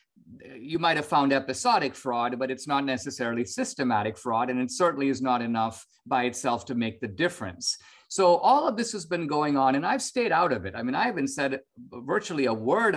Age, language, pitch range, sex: 50-69, English, 130-195 Hz, male